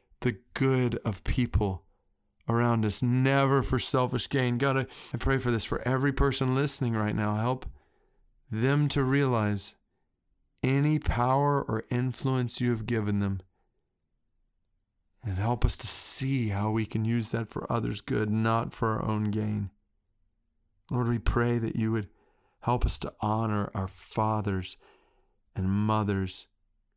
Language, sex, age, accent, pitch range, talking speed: English, male, 40-59, American, 100-120 Hz, 145 wpm